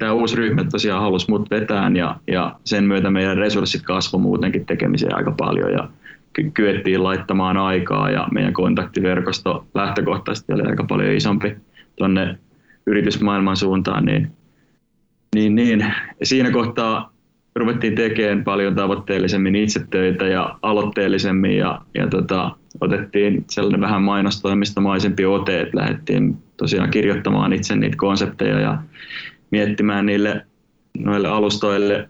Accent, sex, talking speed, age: native, male, 120 wpm, 20-39